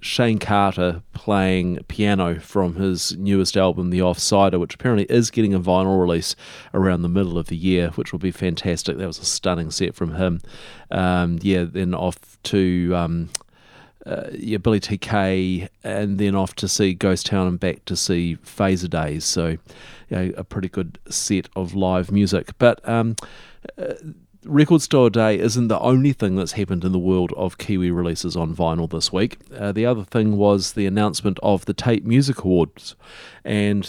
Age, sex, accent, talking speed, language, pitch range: 40-59, male, Australian, 175 wpm, English, 90-110 Hz